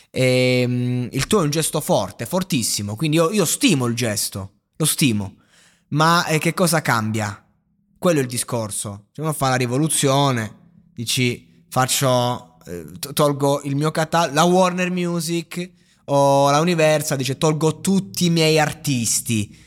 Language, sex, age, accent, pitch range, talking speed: Italian, male, 20-39, native, 120-160 Hz, 155 wpm